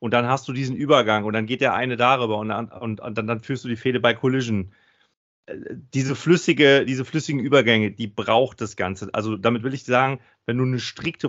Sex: male